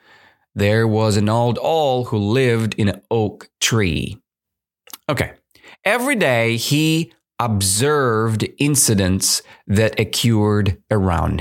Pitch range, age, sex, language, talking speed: 95-130 Hz, 30-49, male, English, 105 wpm